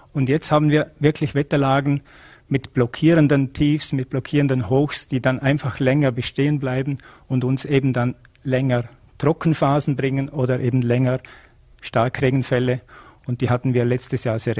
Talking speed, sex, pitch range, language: 150 wpm, male, 125-140 Hz, German